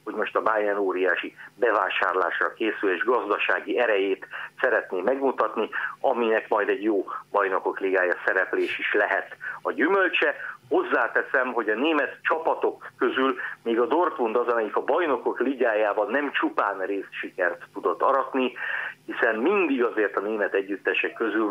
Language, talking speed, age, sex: Hungarian, 140 wpm, 50-69, male